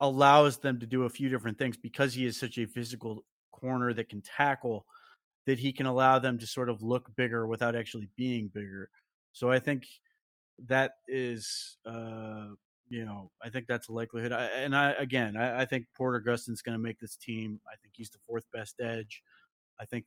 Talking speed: 205 wpm